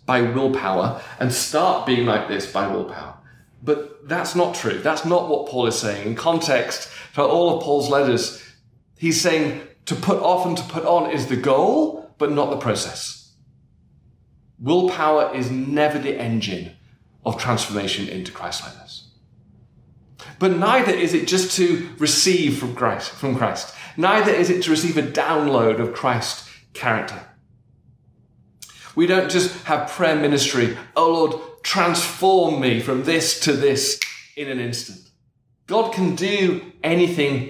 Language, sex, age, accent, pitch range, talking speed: English, male, 30-49, British, 130-175 Hz, 150 wpm